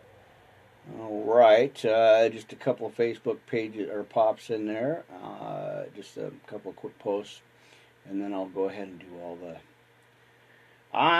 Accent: American